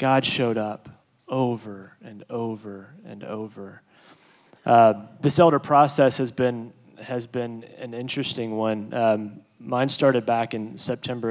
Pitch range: 110-130 Hz